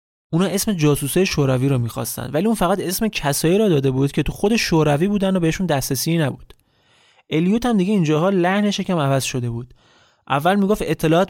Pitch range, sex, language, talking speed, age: 135-180 Hz, male, Persian, 185 wpm, 30-49